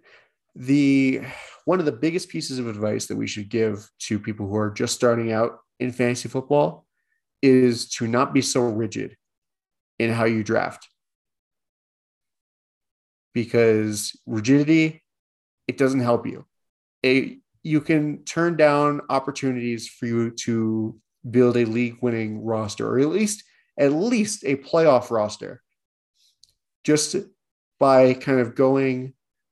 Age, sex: 30-49, male